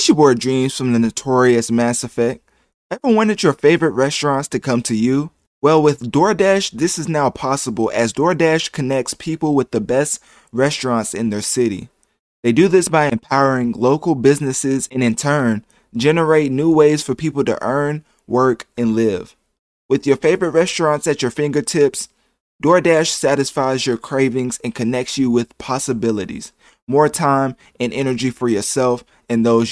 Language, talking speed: English, 160 wpm